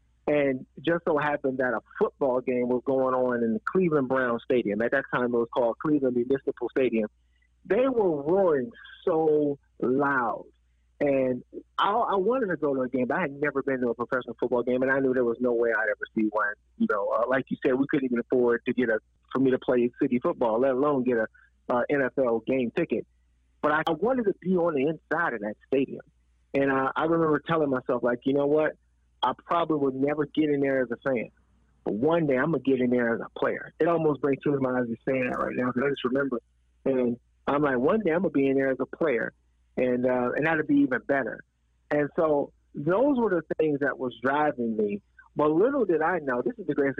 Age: 30-49